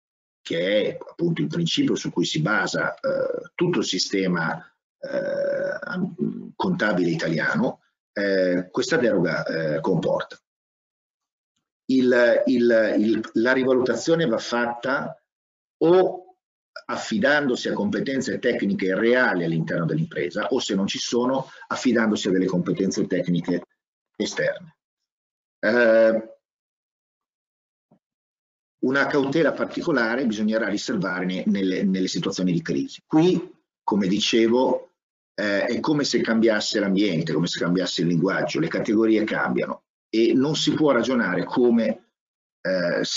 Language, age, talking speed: Italian, 50-69, 110 wpm